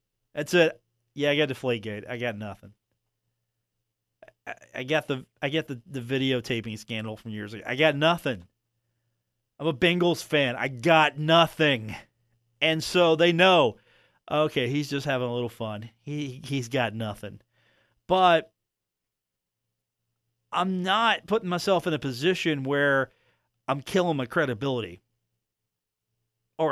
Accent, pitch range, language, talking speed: American, 115-155 Hz, English, 135 wpm